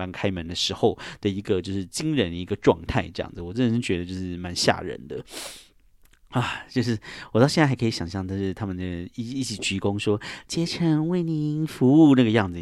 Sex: male